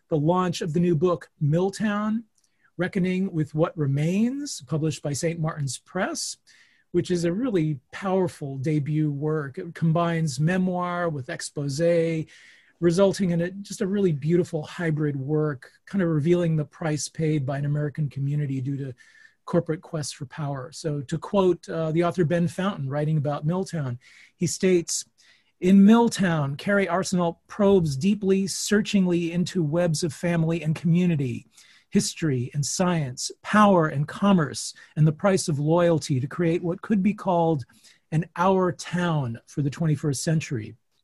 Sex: male